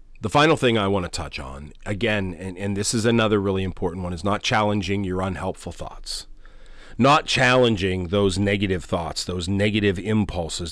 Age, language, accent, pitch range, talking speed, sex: 40-59, English, American, 100-135 Hz, 175 wpm, male